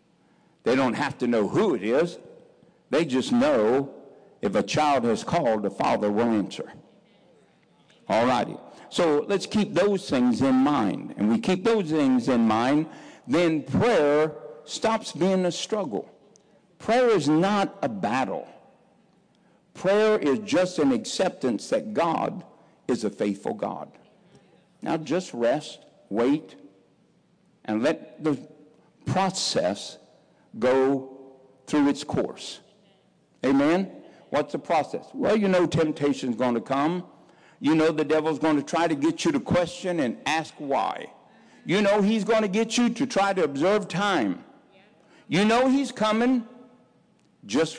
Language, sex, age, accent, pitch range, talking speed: English, male, 60-79, American, 145-225 Hz, 140 wpm